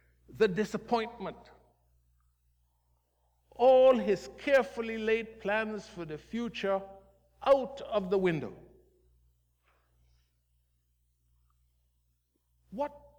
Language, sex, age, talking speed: English, male, 60-79, 70 wpm